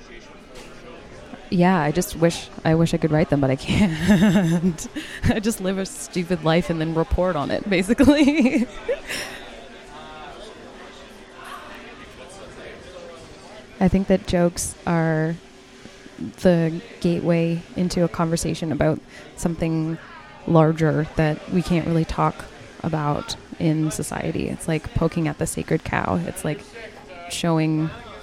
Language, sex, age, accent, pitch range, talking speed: English, female, 20-39, American, 155-170 Hz, 120 wpm